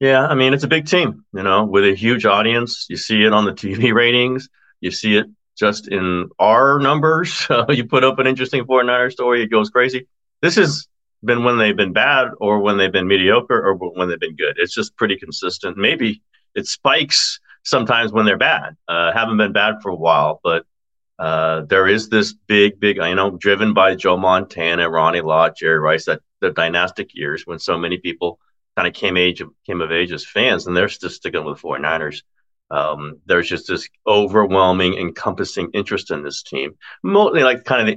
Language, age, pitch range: English, 40-59, 95-140 Hz